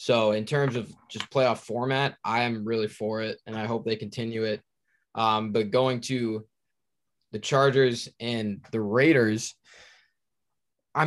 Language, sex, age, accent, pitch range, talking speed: English, male, 20-39, American, 110-135 Hz, 150 wpm